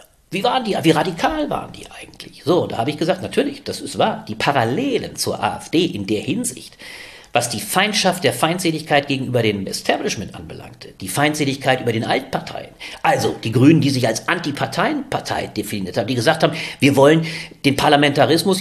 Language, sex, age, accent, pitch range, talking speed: German, male, 50-69, German, 130-175 Hz, 175 wpm